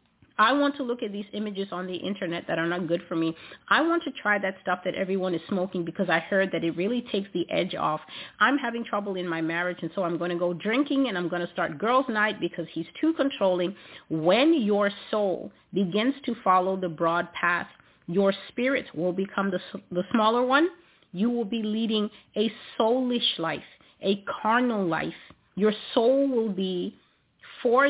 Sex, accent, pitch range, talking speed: female, American, 175-225 Hz, 200 wpm